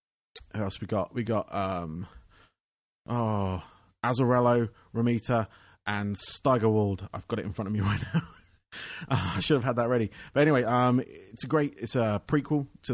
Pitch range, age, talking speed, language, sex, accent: 100-125 Hz, 30-49, 175 wpm, English, male, British